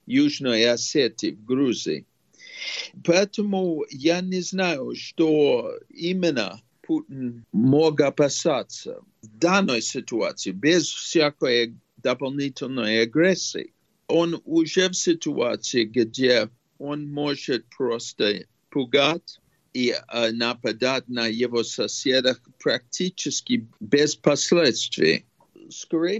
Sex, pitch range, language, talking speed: male, 130-170 Hz, Russian, 85 wpm